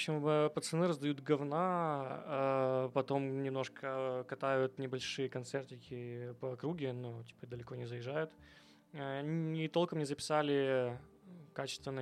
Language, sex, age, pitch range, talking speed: Ukrainian, male, 20-39, 125-145 Hz, 110 wpm